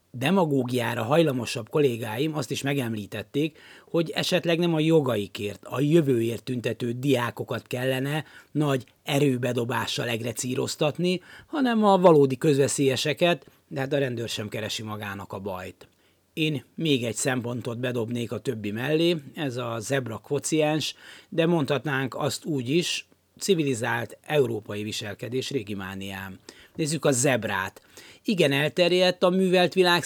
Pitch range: 115-160 Hz